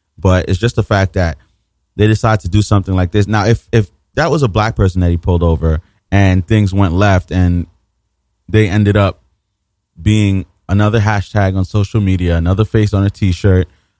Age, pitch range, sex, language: 20-39, 90-105 Hz, male, English